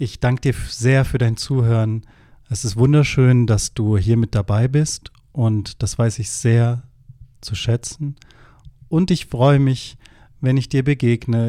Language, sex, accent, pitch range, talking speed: German, male, German, 115-130 Hz, 160 wpm